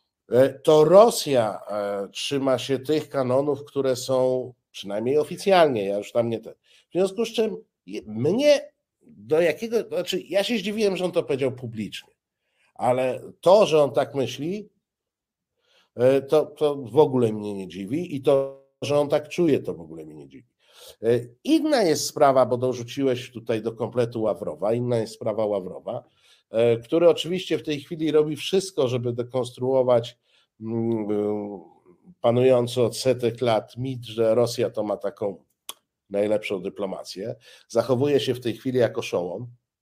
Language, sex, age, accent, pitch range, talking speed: Polish, male, 50-69, native, 115-155 Hz, 145 wpm